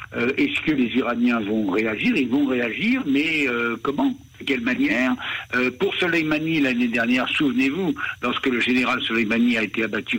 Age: 60-79